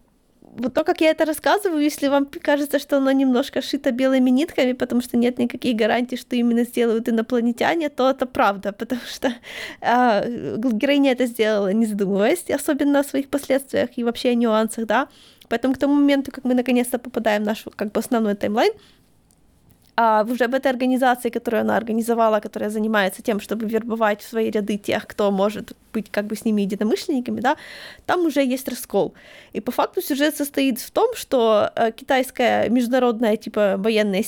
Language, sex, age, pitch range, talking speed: Ukrainian, female, 20-39, 230-280 Hz, 175 wpm